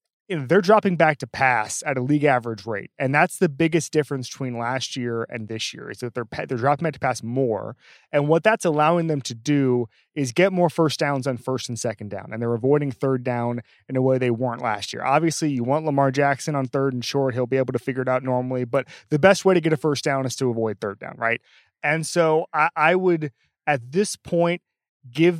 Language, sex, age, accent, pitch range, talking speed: English, male, 30-49, American, 125-160 Hz, 235 wpm